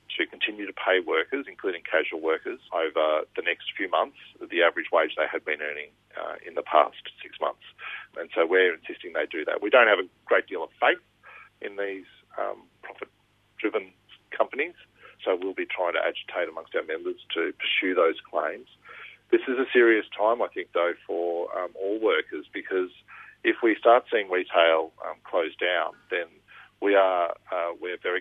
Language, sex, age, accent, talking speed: English, male, 40-59, Australian, 185 wpm